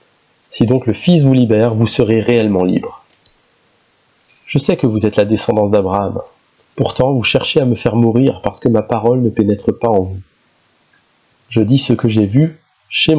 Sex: male